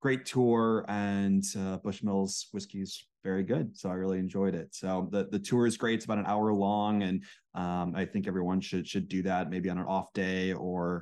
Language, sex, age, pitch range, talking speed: English, male, 20-39, 90-105 Hz, 220 wpm